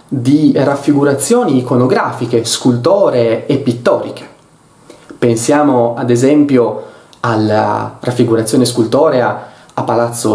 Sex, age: male, 20-39